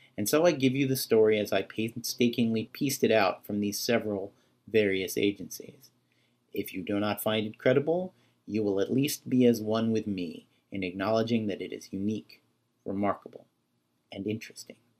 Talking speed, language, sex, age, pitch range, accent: 170 wpm, English, male, 40-59, 100-120 Hz, American